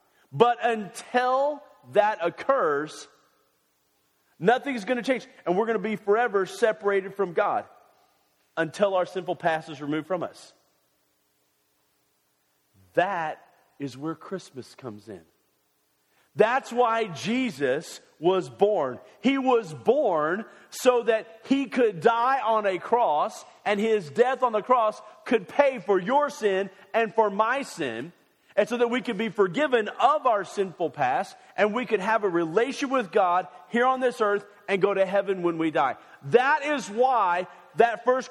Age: 40-59